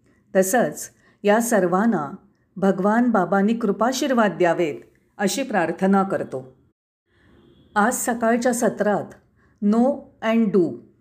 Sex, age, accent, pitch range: female, 40-59, native, 195-250 Hz